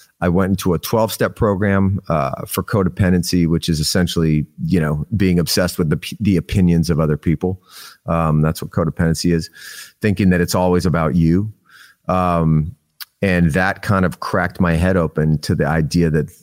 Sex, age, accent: male, 30-49, American